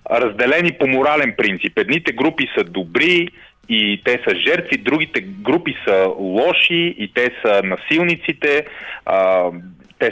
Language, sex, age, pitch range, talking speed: Bulgarian, male, 30-49, 105-165 Hz, 130 wpm